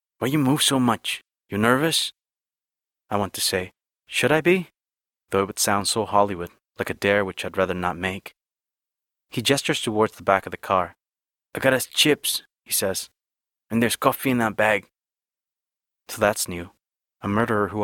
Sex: male